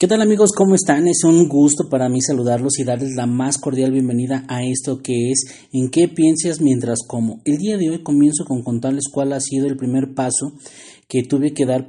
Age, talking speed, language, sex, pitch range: 30-49, 215 wpm, Spanish, male, 125-155 Hz